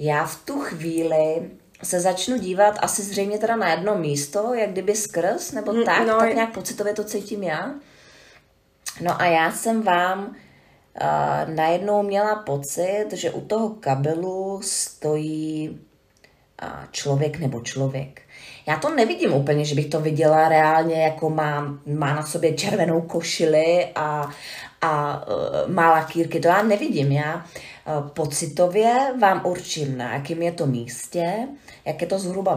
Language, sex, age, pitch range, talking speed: Czech, female, 30-49, 155-210 Hz, 145 wpm